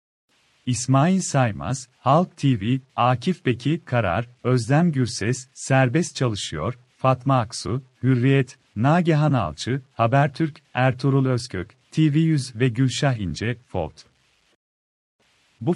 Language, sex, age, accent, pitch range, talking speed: Turkish, male, 40-59, native, 120-145 Hz, 95 wpm